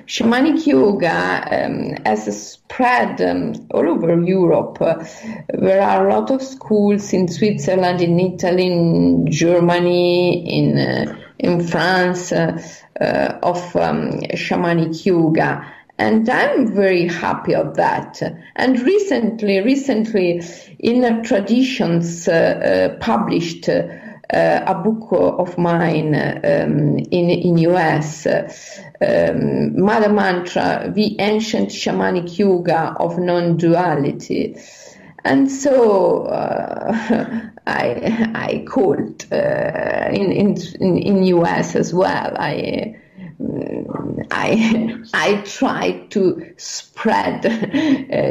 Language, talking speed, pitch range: Italian, 105 wpm, 175-225 Hz